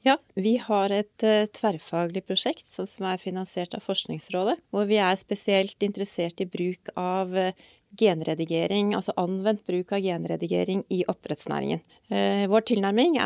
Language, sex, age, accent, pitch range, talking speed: English, female, 30-49, Swedish, 180-210 Hz, 160 wpm